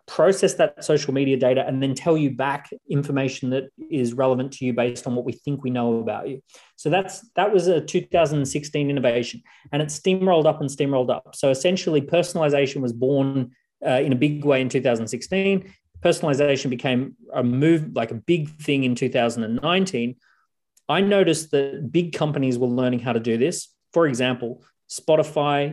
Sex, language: male, English